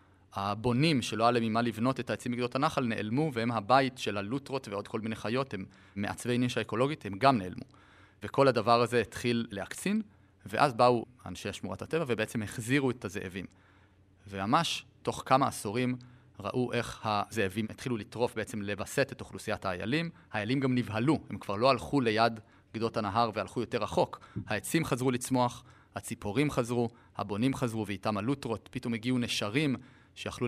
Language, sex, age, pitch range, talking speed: Hebrew, male, 30-49, 105-130 Hz, 140 wpm